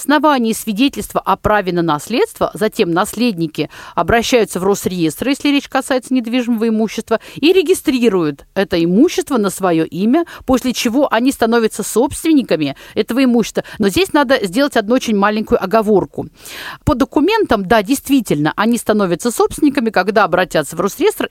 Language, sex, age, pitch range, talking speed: Russian, female, 50-69, 190-265 Hz, 140 wpm